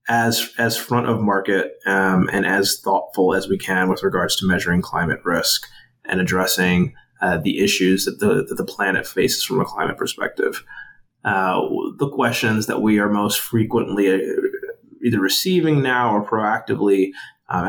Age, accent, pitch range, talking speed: 20-39, American, 95-110 Hz, 160 wpm